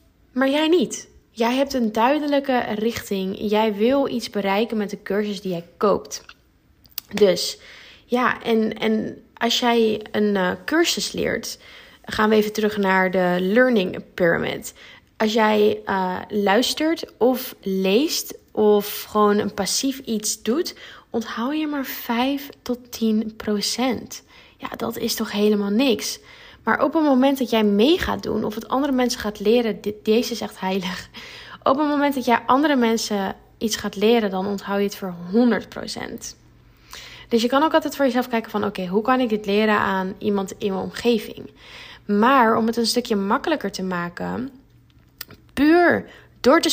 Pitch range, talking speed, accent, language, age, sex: 205-245 Hz, 165 wpm, Dutch, Dutch, 10-29, female